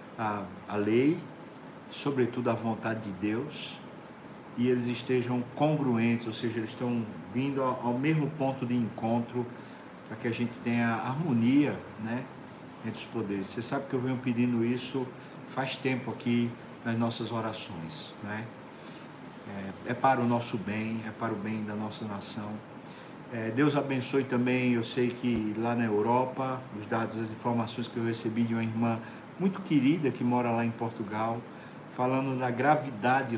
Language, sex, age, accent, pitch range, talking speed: Portuguese, male, 50-69, Brazilian, 110-130 Hz, 160 wpm